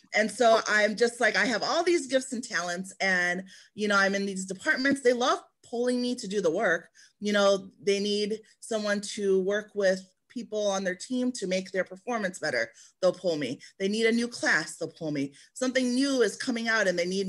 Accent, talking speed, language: American, 220 wpm, English